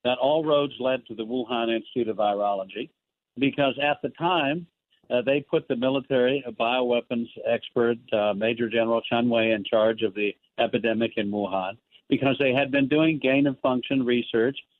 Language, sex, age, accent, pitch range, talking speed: English, male, 60-79, American, 110-135 Hz, 165 wpm